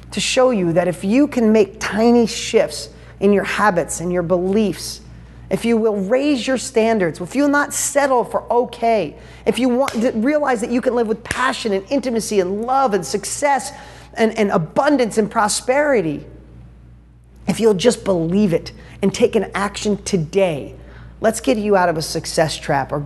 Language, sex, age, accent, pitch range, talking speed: English, male, 40-59, American, 150-210 Hz, 180 wpm